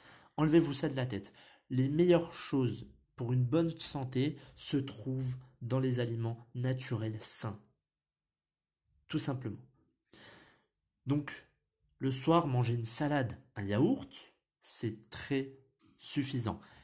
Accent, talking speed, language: French, 115 wpm, French